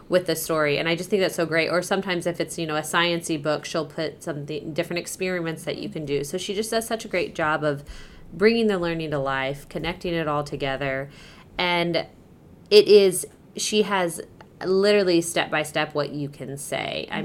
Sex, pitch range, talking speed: female, 150-180 Hz, 205 wpm